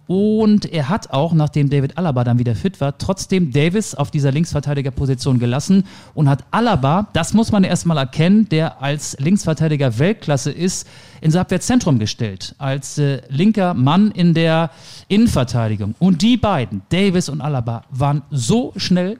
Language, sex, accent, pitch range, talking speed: German, male, German, 135-170 Hz, 155 wpm